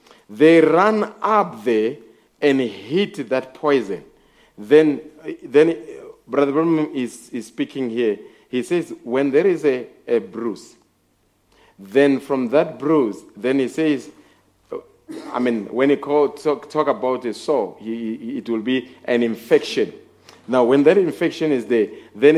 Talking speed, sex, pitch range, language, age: 145 wpm, male, 130-185 Hz, English, 50-69